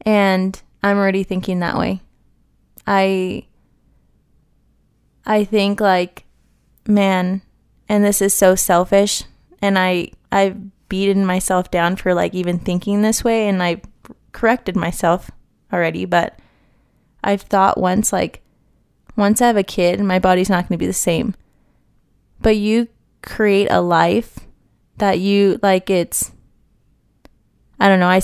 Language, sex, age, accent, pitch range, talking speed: English, female, 20-39, American, 180-200 Hz, 135 wpm